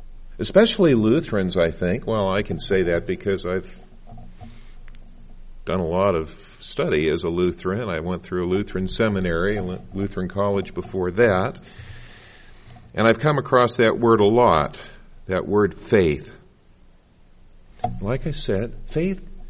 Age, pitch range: 50-69, 95-140 Hz